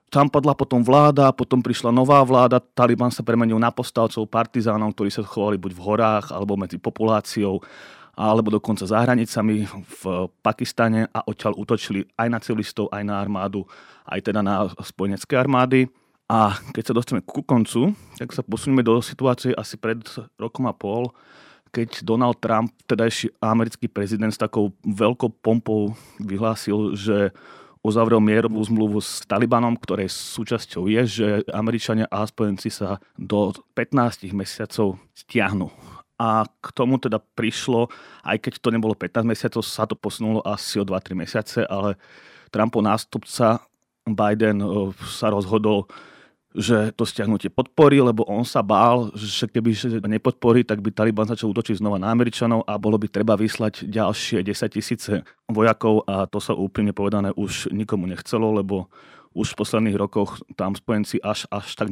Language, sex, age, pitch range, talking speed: Slovak, male, 30-49, 105-115 Hz, 155 wpm